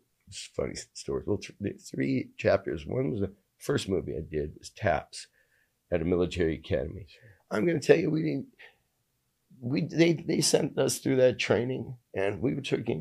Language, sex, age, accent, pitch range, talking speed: English, male, 50-69, American, 95-120 Hz, 175 wpm